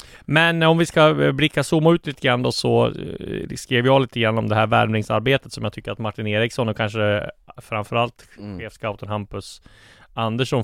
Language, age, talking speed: Swedish, 30-49, 180 wpm